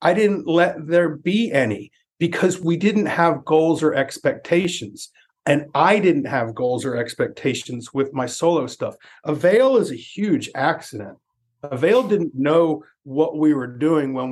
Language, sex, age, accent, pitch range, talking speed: English, male, 40-59, American, 125-160 Hz, 155 wpm